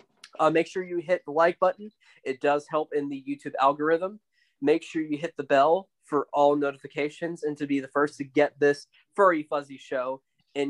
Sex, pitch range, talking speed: male, 135-165 Hz, 200 wpm